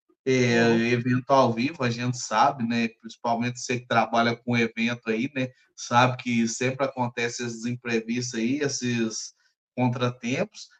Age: 20-39